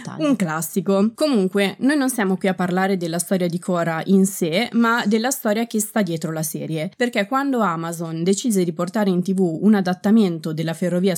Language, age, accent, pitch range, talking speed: Italian, 20-39, native, 170-220 Hz, 190 wpm